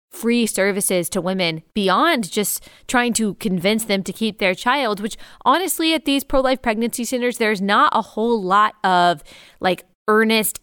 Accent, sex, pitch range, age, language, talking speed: American, female, 190-230 Hz, 20-39, English, 165 wpm